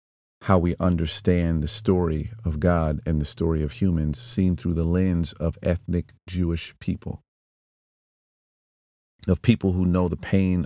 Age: 40-59